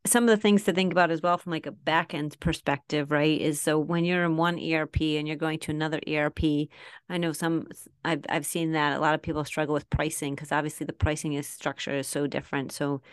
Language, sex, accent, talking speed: English, female, American, 240 wpm